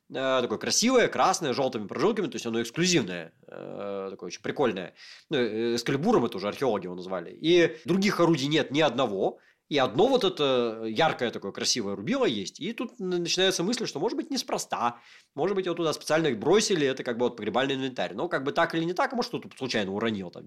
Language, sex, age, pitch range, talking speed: Russian, male, 30-49, 120-180 Hz, 190 wpm